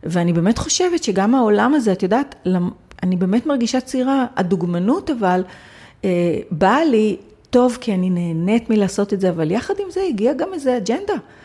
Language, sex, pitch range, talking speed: Hebrew, female, 180-230 Hz, 160 wpm